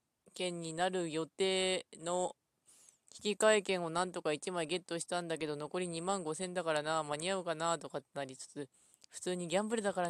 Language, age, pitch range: Japanese, 20-39, 155-205 Hz